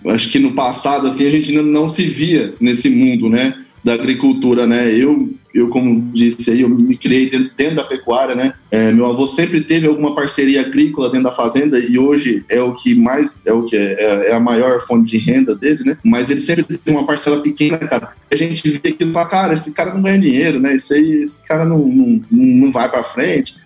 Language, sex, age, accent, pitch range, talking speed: Portuguese, male, 20-39, Brazilian, 135-175 Hz, 225 wpm